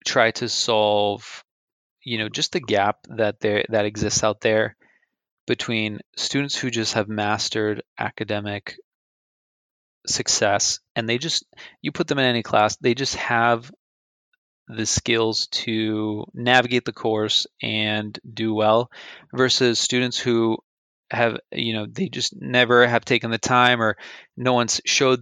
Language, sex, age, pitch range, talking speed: English, male, 20-39, 105-120 Hz, 145 wpm